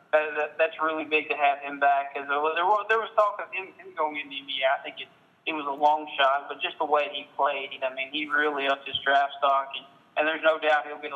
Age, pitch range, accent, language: 20-39, 140-155 Hz, American, English